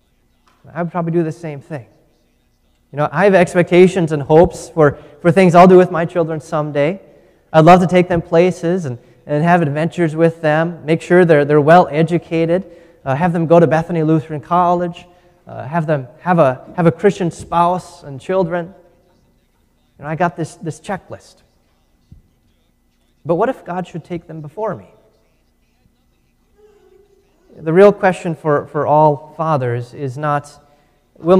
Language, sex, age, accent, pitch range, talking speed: English, male, 30-49, American, 145-175 Hz, 165 wpm